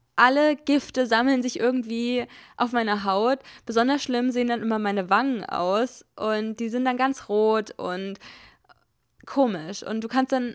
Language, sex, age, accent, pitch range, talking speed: German, female, 20-39, German, 205-245 Hz, 160 wpm